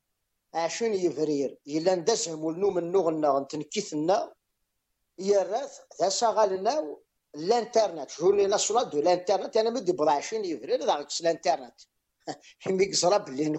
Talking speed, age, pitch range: 70 wpm, 50-69, 175-270 Hz